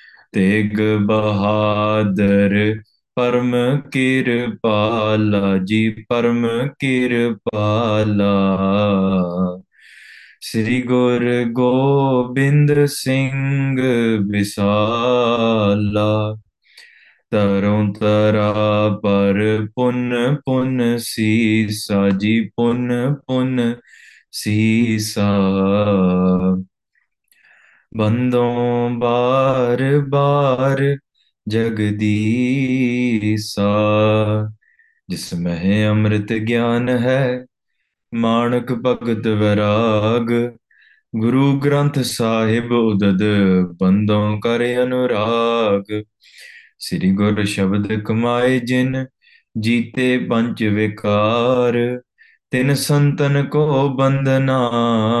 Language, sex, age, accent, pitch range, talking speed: English, male, 20-39, Indian, 105-125 Hz, 55 wpm